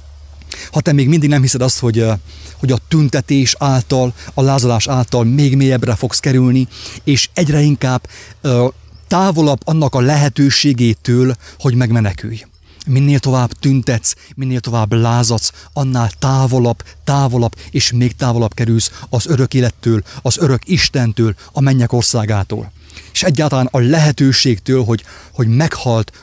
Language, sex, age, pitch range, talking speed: English, male, 30-49, 105-145 Hz, 130 wpm